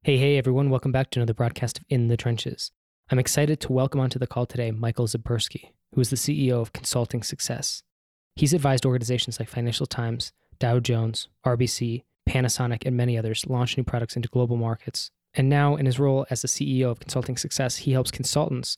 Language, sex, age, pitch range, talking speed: English, male, 20-39, 120-135 Hz, 200 wpm